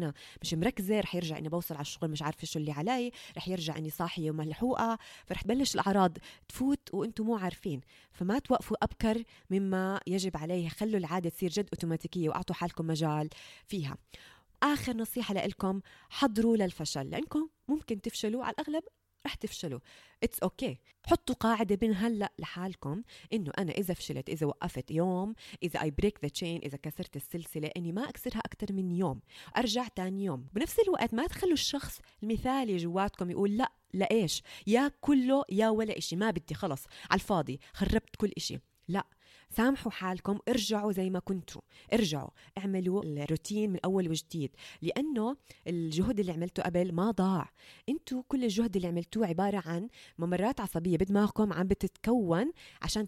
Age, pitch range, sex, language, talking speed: 20-39, 170-225 Hz, female, Arabic, 160 wpm